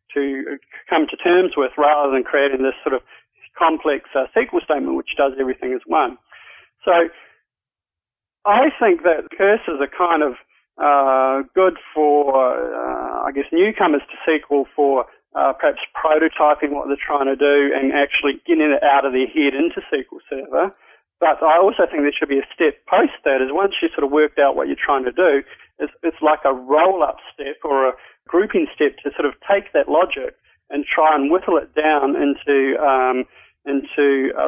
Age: 40-59